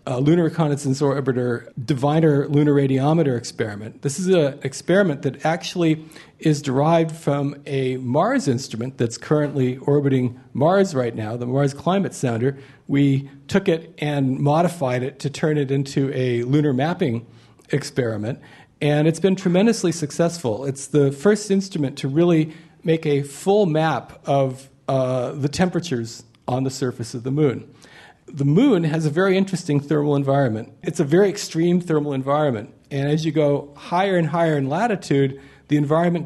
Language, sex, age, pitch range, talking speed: English, male, 40-59, 135-165 Hz, 155 wpm